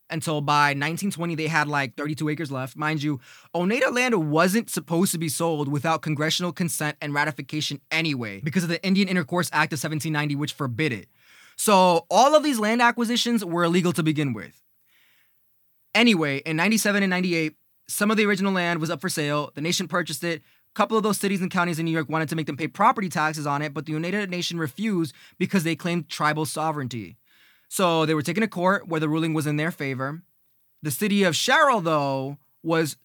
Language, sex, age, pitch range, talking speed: English, male, 20-39, 150-195 Hz, 205 wpm